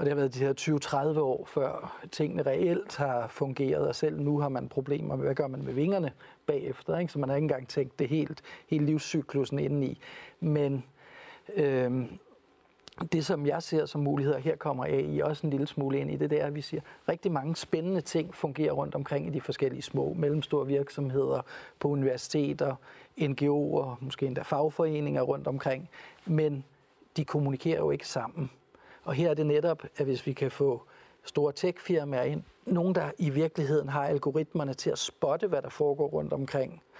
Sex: male